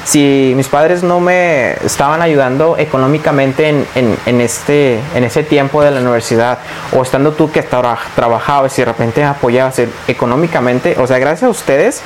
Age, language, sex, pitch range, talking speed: 30-49, Spanish, male, 130-170 Hz, 160 wpm